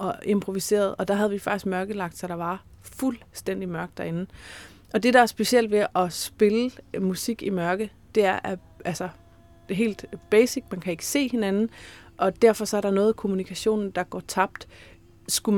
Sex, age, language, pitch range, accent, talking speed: female, 30-49, Danish, 190-225 Hz, native, 195 wpm